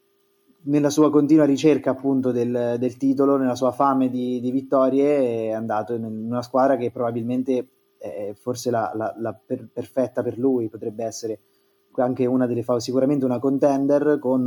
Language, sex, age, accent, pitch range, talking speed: Italian, male, 20-39, native, 120-145 Hz, 165 wpm